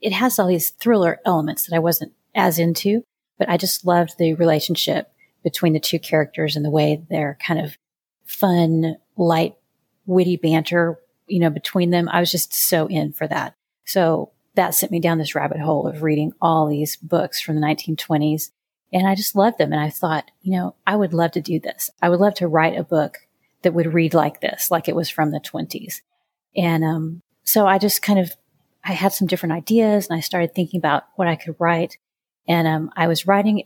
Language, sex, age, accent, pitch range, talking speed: English, female, 30-49, American, 160-185 Hz, 210 wpm